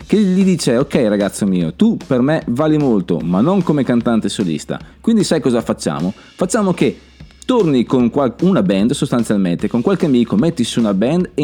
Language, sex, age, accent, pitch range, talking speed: Italian, male, 30-49, native, 100-150 Hz, 185 wpm